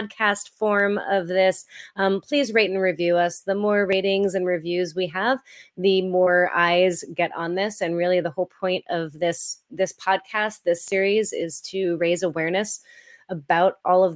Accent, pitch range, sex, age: American, 170-200 Hz, female, 30-49